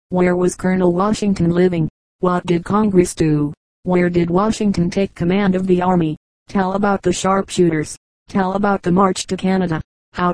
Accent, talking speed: American, 165 wpm